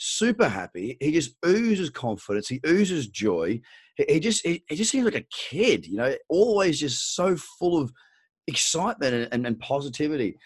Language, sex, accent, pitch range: English, male, Australian, 105-145 Hz